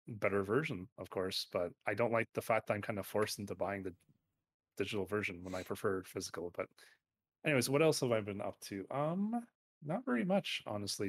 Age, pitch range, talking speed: 30-49, 100-130 Hz, 205 wpm